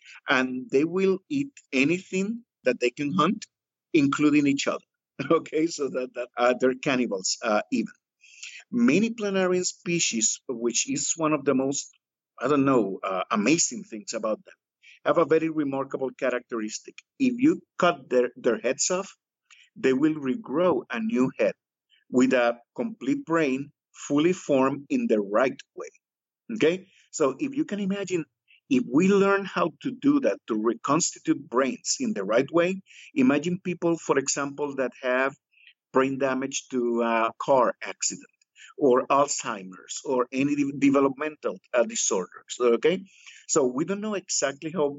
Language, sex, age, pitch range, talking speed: English, male, 50-69, 130-195 Hz, 145 wpm